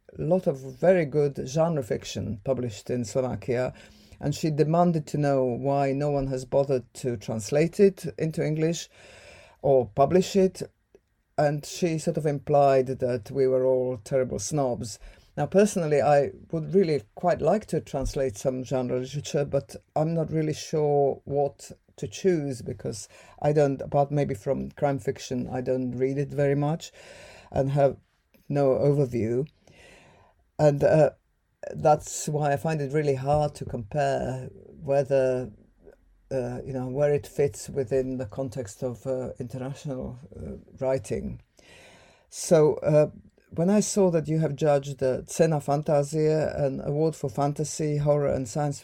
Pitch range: 130-155 Hz